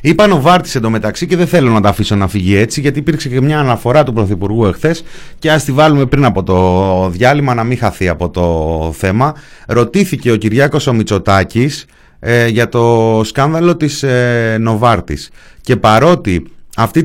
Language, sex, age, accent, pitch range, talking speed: Greek, male, 30-49, native, 100-155 Hz, 170 wpm